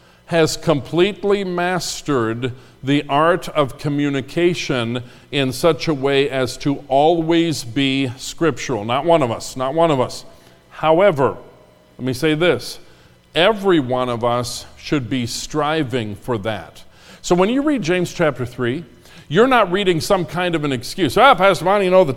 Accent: American